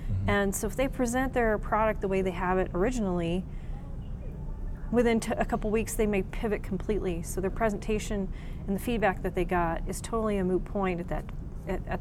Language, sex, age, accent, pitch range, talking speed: English, female, 40-59, American, 185-215 Hz, 185 wpm